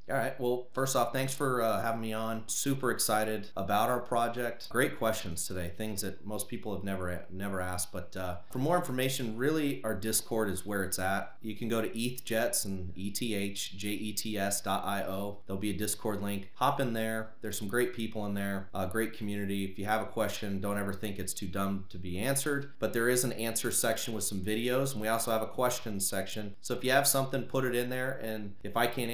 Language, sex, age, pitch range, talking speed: English, male, 30-49, 100-120 Hz, 220 wpm